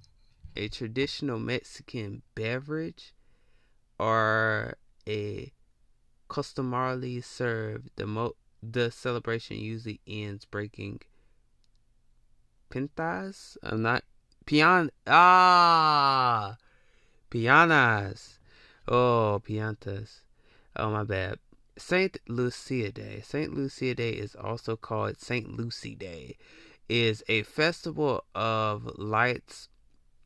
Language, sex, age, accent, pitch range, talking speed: English, male, 20-39, American, 105-130 Hz, 85 wpm